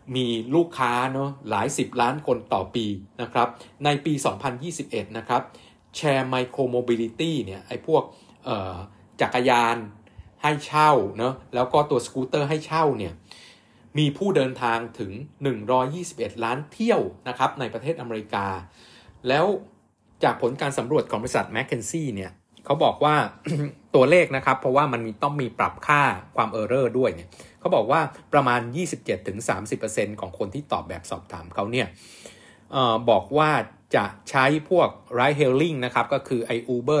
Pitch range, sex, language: 115-145 Hz, male, Thai